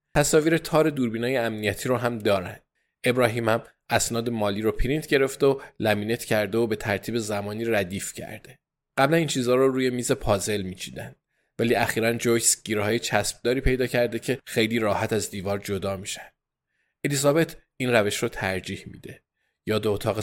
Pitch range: 105-125 Hz